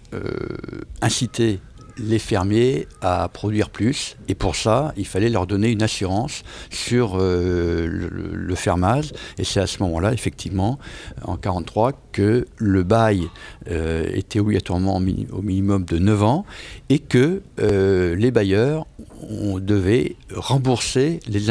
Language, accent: French, French